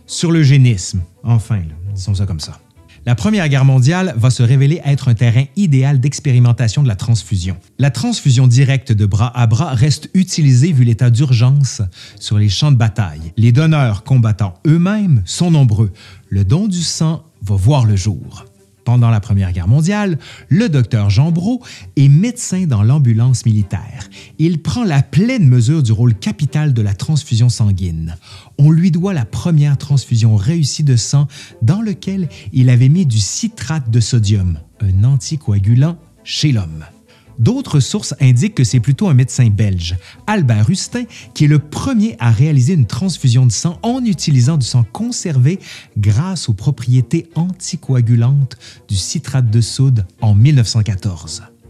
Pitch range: 110-150 Hz